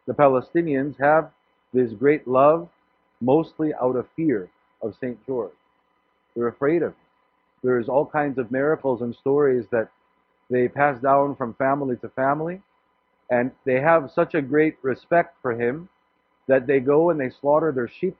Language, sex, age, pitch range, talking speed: English, male, 50-69, 120-150 Hz, 160 wpm